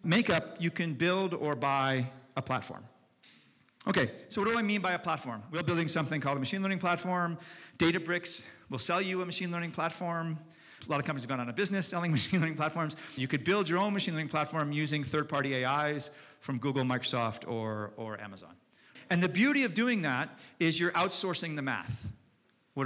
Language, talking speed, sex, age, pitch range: English, 195 wpm, male, 40-59, 150-190 Hz